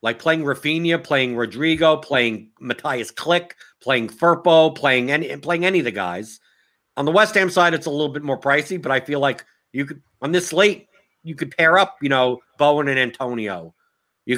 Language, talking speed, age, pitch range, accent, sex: English, 195 wpm, 50-69, 125-165 Hz, American, male